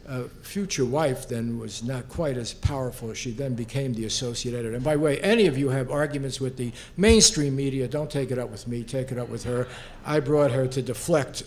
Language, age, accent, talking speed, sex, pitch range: English, 60-79, American, 230 wpm, male, 120-150 Hz